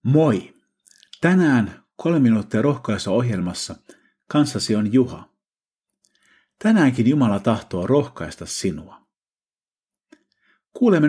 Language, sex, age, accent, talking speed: Finnish, male, 50-69, native, 80 wpm